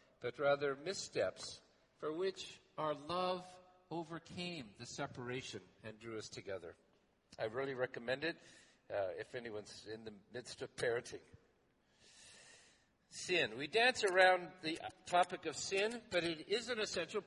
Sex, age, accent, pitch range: male, 50-69, American, 150-200 Hz